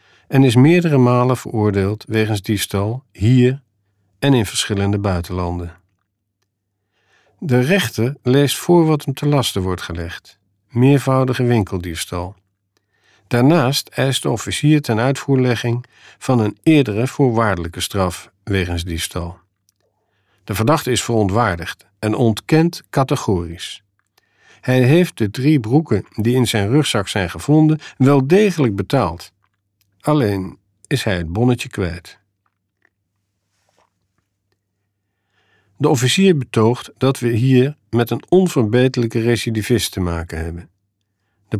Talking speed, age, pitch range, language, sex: 115 wpm, 50-69, 100-130 Hz, Dutch, male